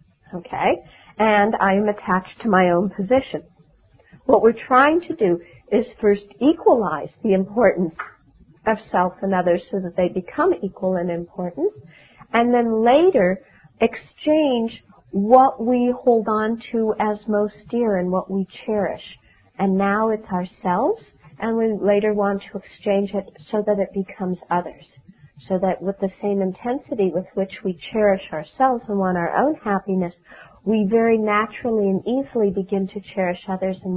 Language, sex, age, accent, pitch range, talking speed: English, female, 50-69, American, 185-230 Hz, 155 wpm